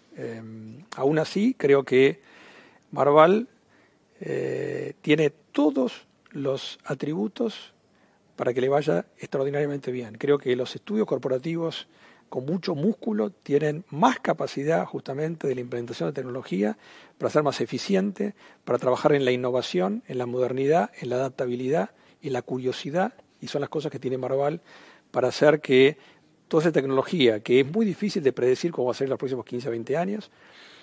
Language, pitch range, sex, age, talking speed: Spanish, 125-175 Hz, male, 50-69, 160 wpm